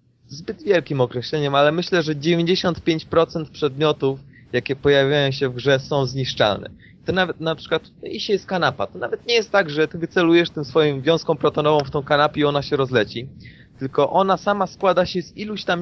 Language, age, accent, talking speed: Polish, 20-39, native, 185 wpm